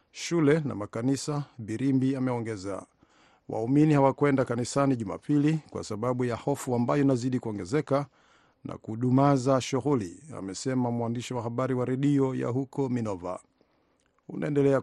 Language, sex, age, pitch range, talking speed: Swahili, male, 50-69, 120-140 Hz, 115 wpm